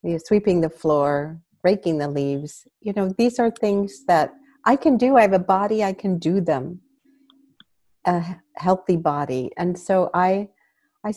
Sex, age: female, 50-69